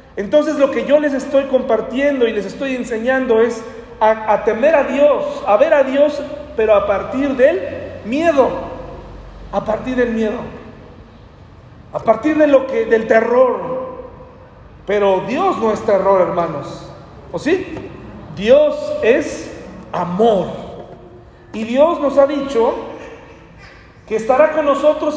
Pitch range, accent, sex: 215-280 Hz, Mexican, male